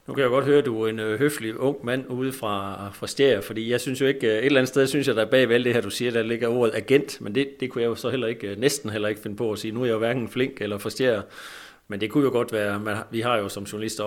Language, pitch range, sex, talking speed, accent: Danish, 105-130 Hz, male, 320 wpm, native